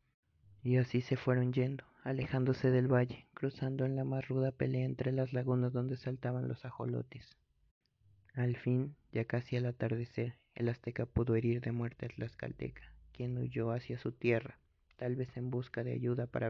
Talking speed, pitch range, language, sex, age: 170 wpm, 120-130 Hz, Spanish, male, 30-49